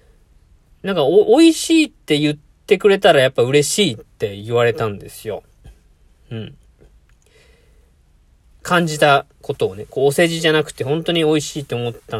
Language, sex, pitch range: Japanese, male, 110-180 Hz